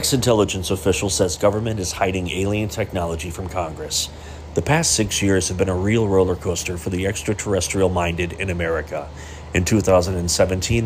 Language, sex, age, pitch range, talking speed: English, male, 30-49, 85-100 Hz, 155 wpm